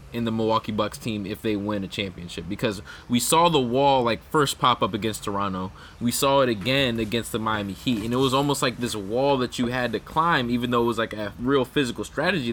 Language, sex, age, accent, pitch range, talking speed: English, male, 20-39, American, 105-125 Hz, 240 wpm